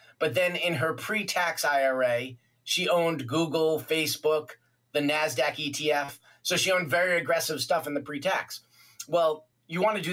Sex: male